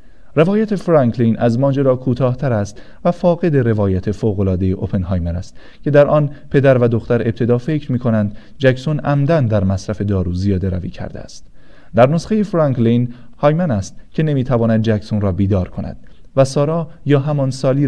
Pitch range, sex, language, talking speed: 105-140 Hz, male, Persian, 155 wpm